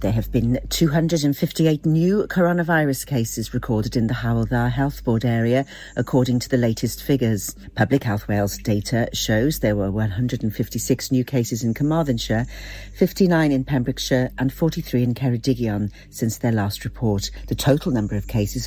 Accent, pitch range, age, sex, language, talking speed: British, 110-140 Hz, 50-69, female, English, 150 wpm